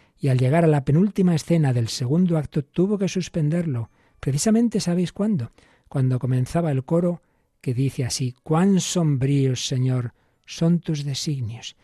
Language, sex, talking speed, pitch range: Spanish, male, 145 wpm, 125-165 Hz